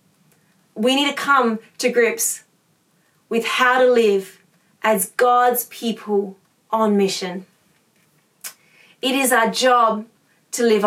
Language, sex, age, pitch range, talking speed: English, female, 20-39, 200-255 Hz, 115 wpm